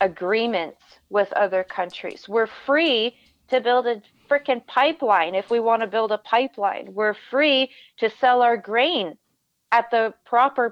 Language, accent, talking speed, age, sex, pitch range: English, American, 150 wpm, 30-49, female, 215-265 Hz